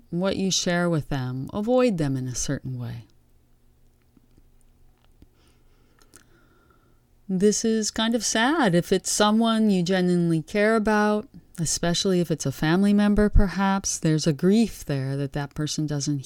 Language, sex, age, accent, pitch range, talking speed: English, female, 30-49, American, 135-205 Hz, 140 wpm